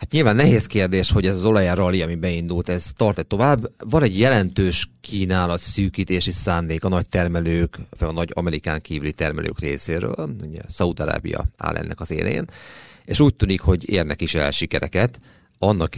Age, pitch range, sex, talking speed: 40-59, 80-105 Hz, male, 175 wpm